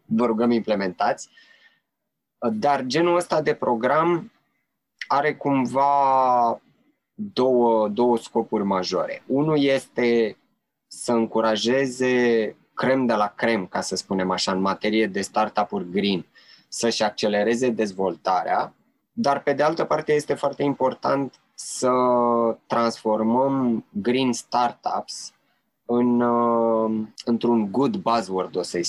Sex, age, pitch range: male, 20-39, 115-140 Hz